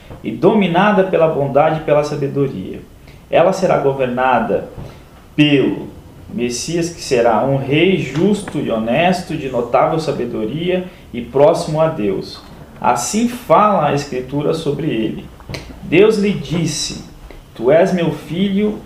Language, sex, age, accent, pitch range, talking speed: Portuguese, male, 20-39, Brazilian, 140-180 Hz, 125 wpm